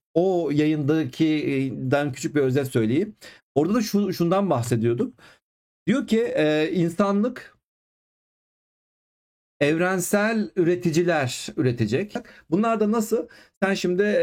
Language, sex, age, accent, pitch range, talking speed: Turkish, male, 40-59, native, 130-185 Hz, 95 wpm